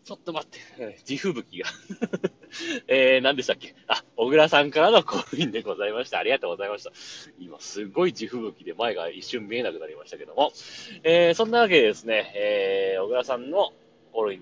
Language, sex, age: Japanese, male, 30-49